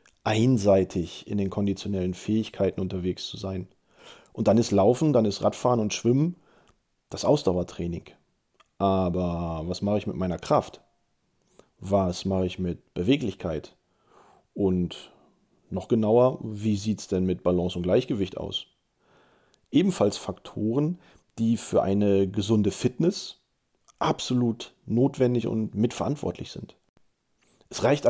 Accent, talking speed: German, 120 wpm